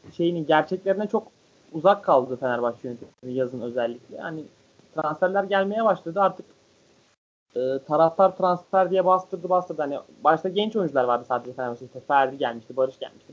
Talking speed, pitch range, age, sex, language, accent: 135 wpm, 135-200 Hz, 20-39, male, Turkish, native